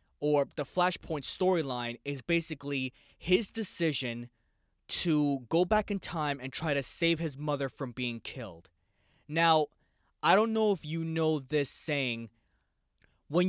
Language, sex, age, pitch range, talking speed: English, male, 20-39, 130-170 Hz, 140 wpm